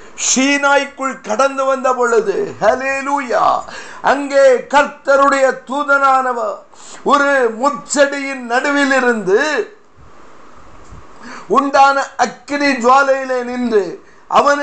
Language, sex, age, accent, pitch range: Tamil, male, 50-69, native, 245-285 Hz